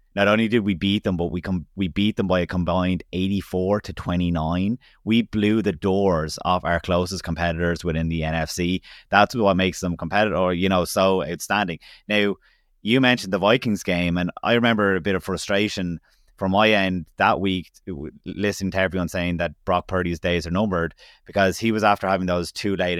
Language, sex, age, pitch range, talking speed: English, male, 20-39, 85-100 Hz, 195 wpm